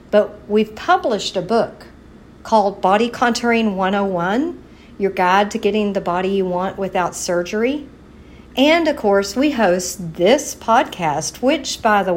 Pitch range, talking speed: 185-240 Hz, 145 wpm